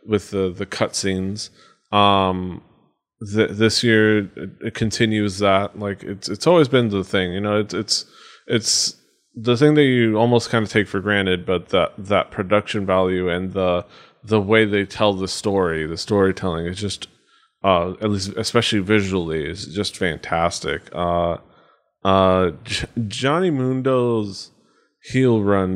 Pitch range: 95-115 Hz